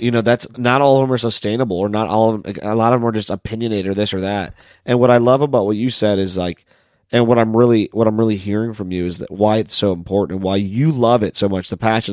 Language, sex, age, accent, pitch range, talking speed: English, male, 30-49, American, 100-120 Hz, 295 wpm